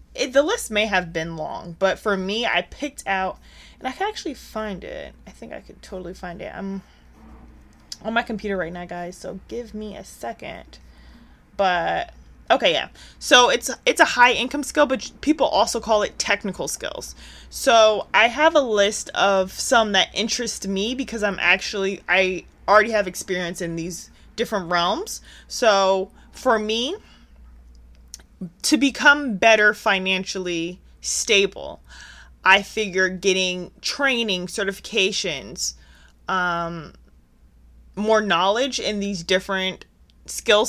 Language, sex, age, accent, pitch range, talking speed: English, female, 20-39, American, 175-220 Hz, 140 wpm